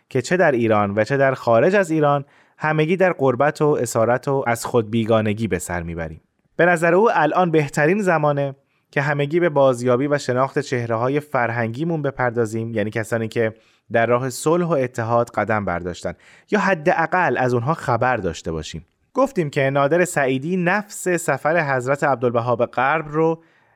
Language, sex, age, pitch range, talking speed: Persian, male, 20-39, 115-160 Hz, 165 wpm